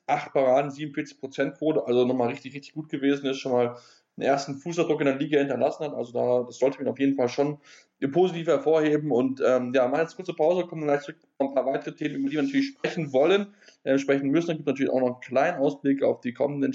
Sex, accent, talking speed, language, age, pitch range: male, German, 245 wpm, German, 10-29, 135-165 Hz